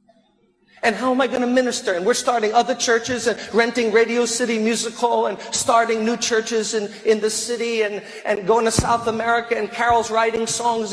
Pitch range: 210-245 Hz